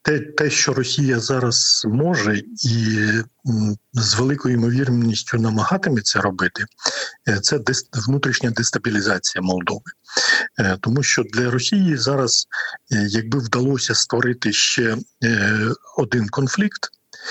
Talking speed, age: 95 wpm, 50-69